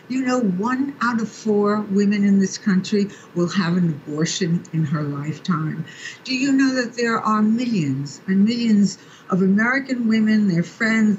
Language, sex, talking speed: English, female, 165 wpm